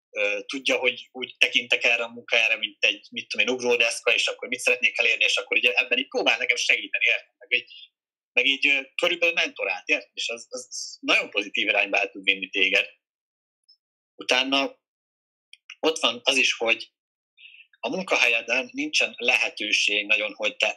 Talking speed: 160 wpm